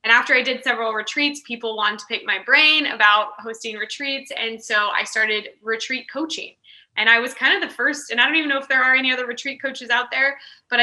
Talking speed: 240 wpm